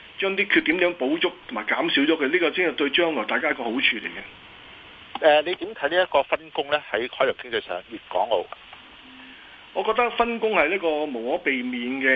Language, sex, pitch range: Chinese, male, 135-180 Hz